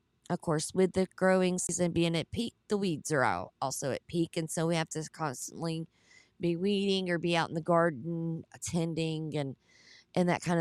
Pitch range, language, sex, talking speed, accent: 145-175 Hz, English, female, 200 wpm, American